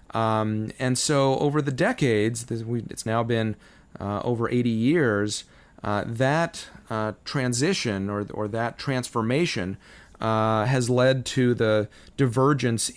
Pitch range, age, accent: 100-125 Hz, 30-49, American